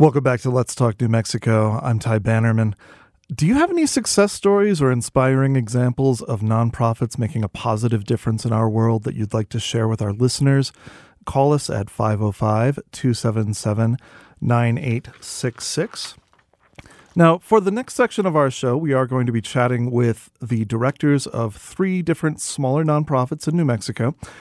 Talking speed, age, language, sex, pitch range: 160 wpm, 40-59, English, male, 115-145 Hz